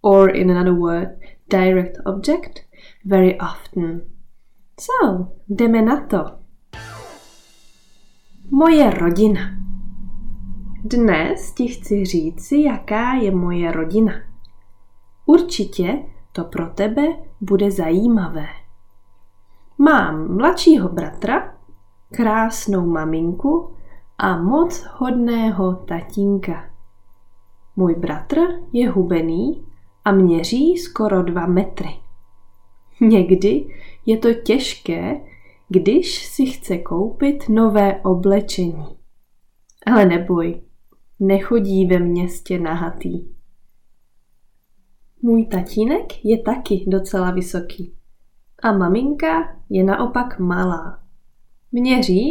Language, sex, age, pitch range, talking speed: Czech, female, 20-39, 165-225 Hz, 85 wpm